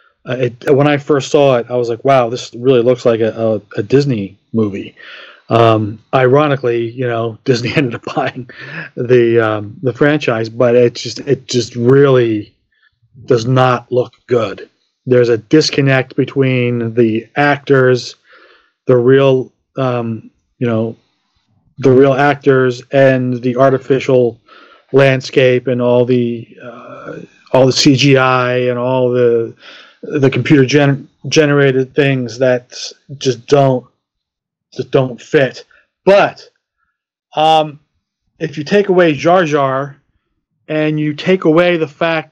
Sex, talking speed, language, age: male, 130 wpm, English, 40-59